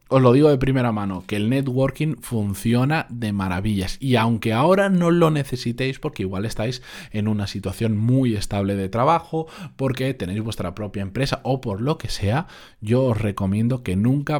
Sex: male